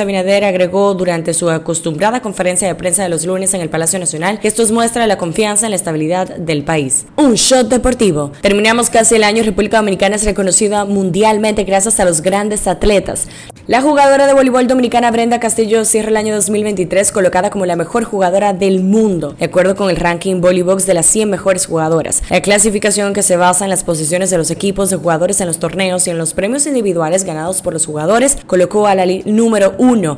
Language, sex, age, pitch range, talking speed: Spanish, female, 10-29, 175-210 Hz, 205 wpm